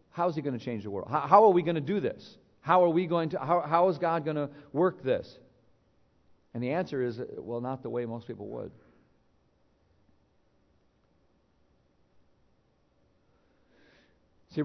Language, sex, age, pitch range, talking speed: English, male, 50-69, 120-160 Hz, 165 wpm